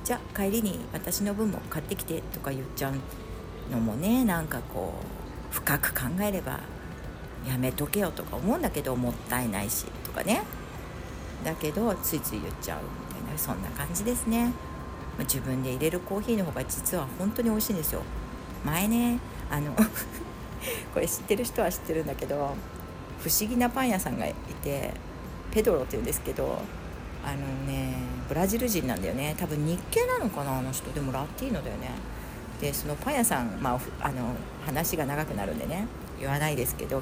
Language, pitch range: Japanese, 130-195 Hz